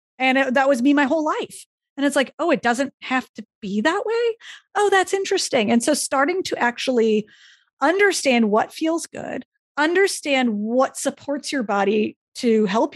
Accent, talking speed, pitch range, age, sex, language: American, 170 wpm, 210-280 Hz, 30-49, female, English